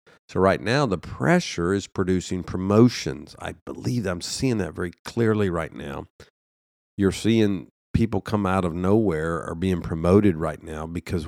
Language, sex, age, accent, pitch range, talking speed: English, male, 50-69, American, 85-105 Hz, 160 wpm